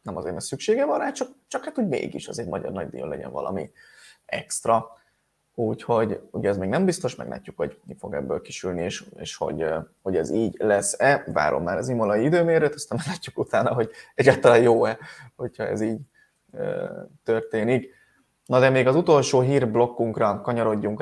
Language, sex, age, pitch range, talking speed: Hungarian, male, 20-39, 115-155 Hz, 175 wpm